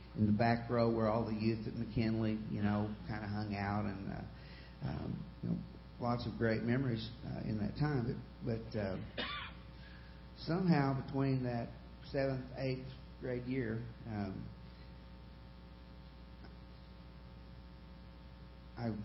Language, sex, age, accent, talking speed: English, male, 50-69, American, 130 wpm